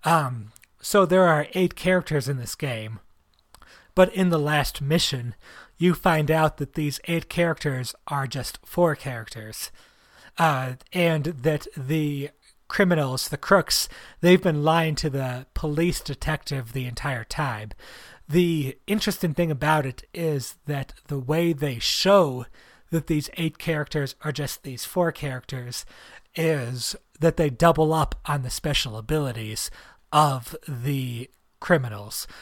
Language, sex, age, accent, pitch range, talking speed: English, male, 30-49, American, 130-165 Hz, 135 wpm